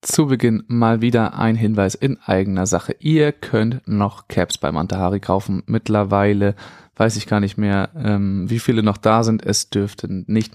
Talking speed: 175 wpm